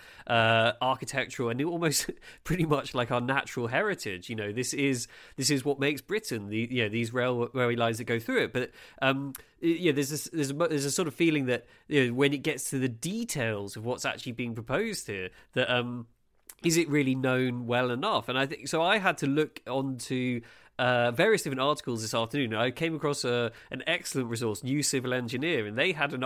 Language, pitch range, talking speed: English, 120-145 Hz, 215 wpm